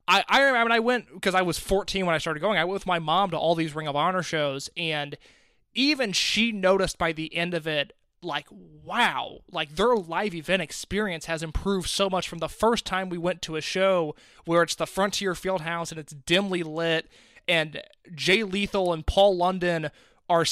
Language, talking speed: English, 210 wpm